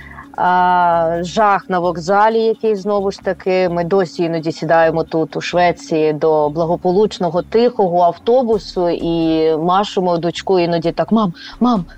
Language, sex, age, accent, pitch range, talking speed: Ukrainian, female, 20-39, native, 170-210 Hz, 130 wpm